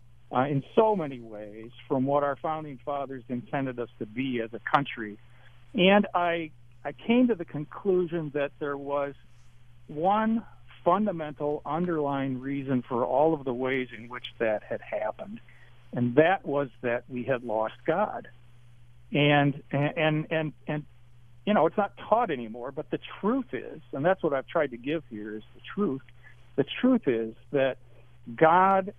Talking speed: 165 wpm